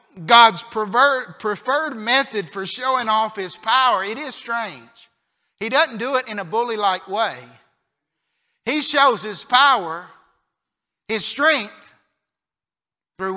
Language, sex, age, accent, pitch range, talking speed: English, male, 50-69, American, 220-275 Hz, 115 wpm